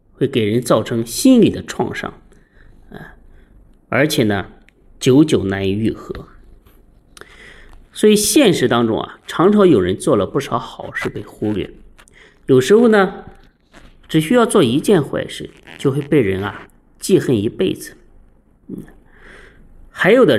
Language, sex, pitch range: Chinese, male, 105-175 Hz